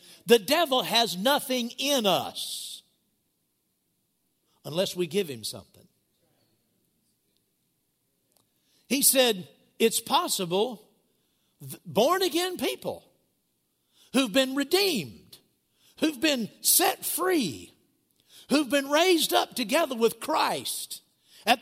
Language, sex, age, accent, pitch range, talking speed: English, male, 60-79, American, 190-275 Hz, 90 wpm